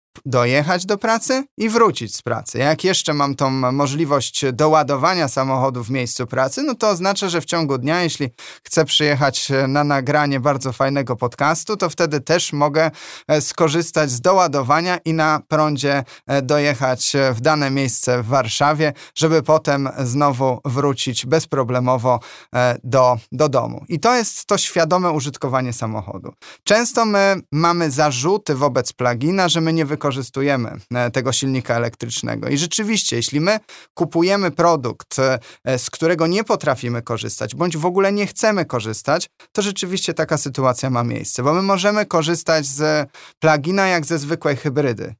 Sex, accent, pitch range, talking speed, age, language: male, native, 130-165 Hz, 145 wpm, 20-39, Polish